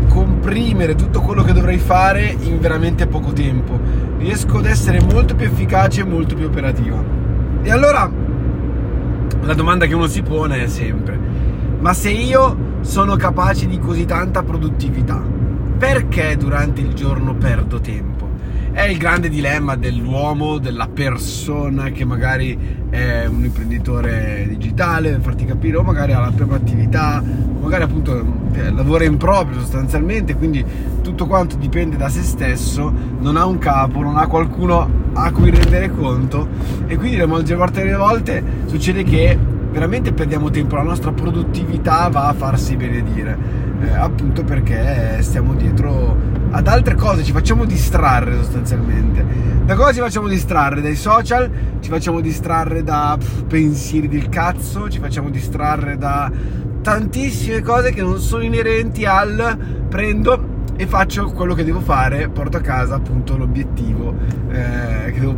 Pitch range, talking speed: 105-140 Hz, 150 wpm